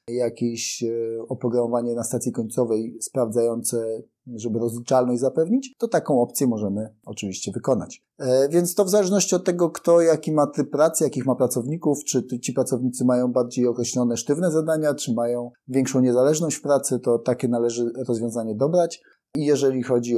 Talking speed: 150 wpm